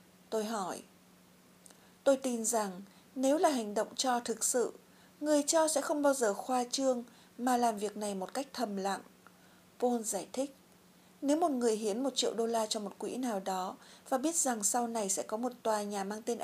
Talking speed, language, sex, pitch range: 205 wpm, Vietnamese, female, 210-270 Hz